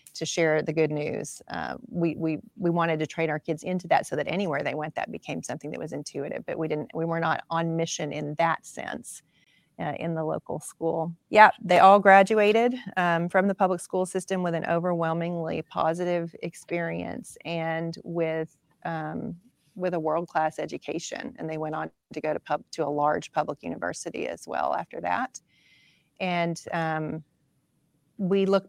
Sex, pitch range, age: female, 160-185 Hz, 30-49